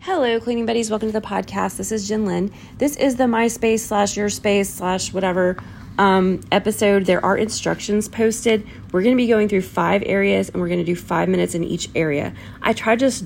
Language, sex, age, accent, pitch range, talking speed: English, female, 30-49, American, 160-205 Hz, 200 wpm